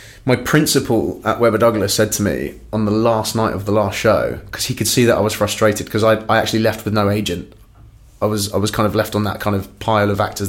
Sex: male